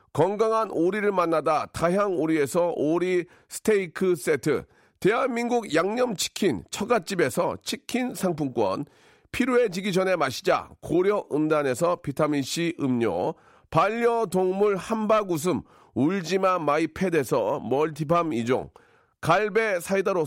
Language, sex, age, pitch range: Korean, male, 40-59, 170-220 Hz